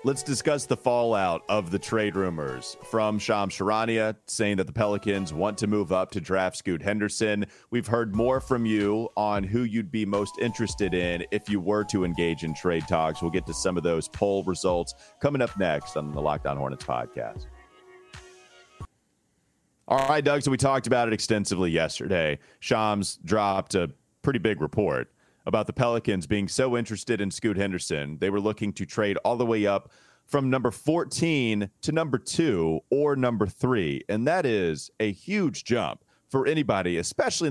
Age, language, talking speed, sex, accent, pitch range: 30-49, English, 180 wpm, male, American, 95-120 Hz